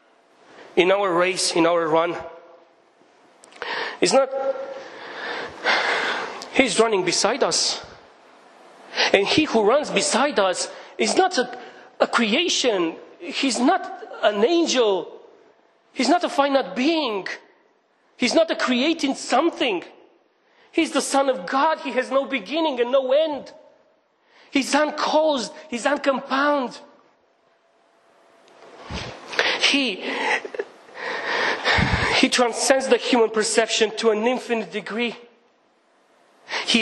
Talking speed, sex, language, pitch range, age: 105 wpm, male, English, 190-315 Hz, 40-59